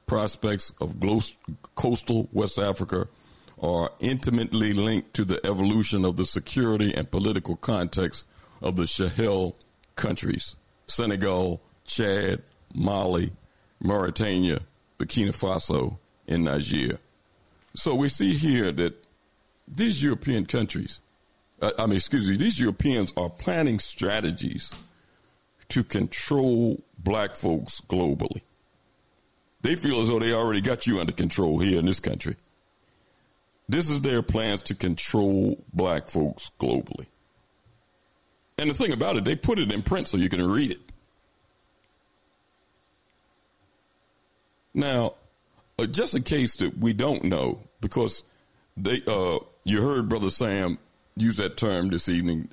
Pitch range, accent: 90-115 Hz, American